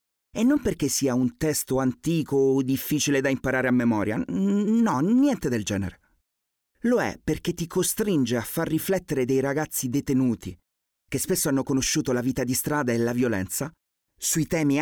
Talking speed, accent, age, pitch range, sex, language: 165 wpm, native, 30-49, 115-165 Hz, male, Italian